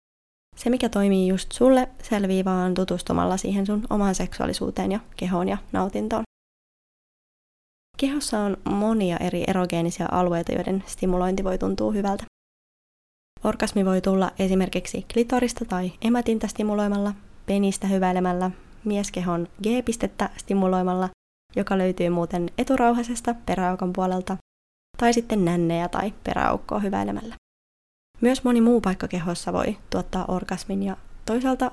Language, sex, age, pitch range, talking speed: Finnish, female, 20-39, 180-220 Hz, 115 wpm